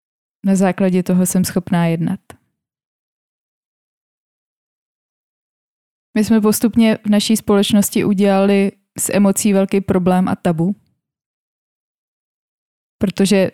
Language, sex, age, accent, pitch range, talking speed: Czech, female, 20-39, native, 175-195 Hz, 90 wpm